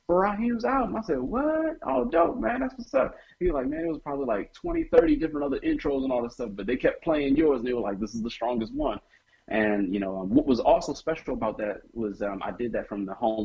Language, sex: English, male